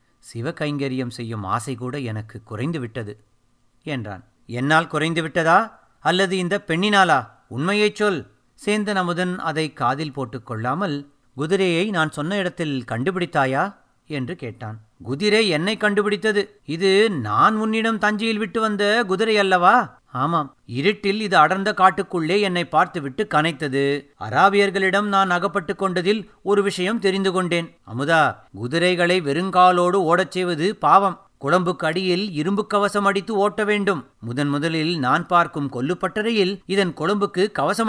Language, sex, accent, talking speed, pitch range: Tamil, male, native, 115 wpm, 140-200 Hz